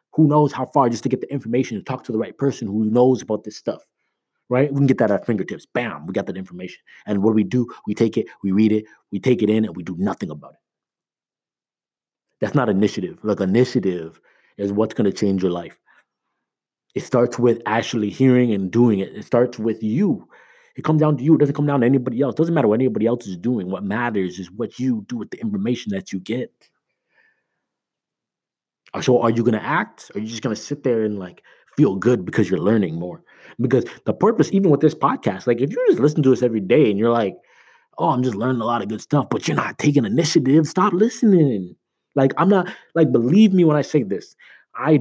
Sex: male